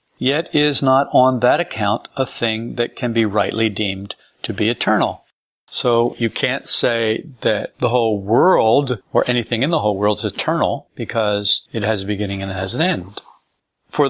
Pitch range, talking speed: 110-130 Hz, 185 wpm